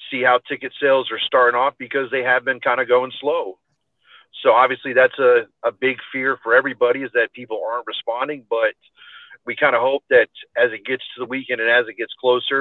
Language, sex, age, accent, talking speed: English, male, 40-59, American, 220 wpm